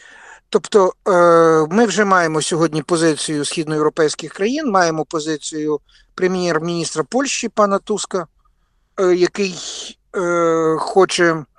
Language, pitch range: Ukrainian, 155-190 Hz